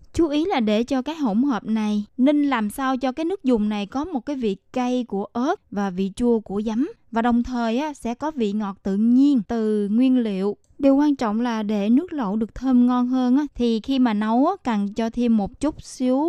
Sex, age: female, 20-39